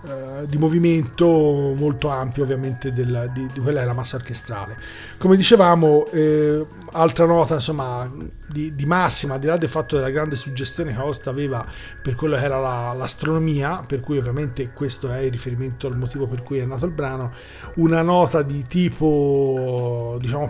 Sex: male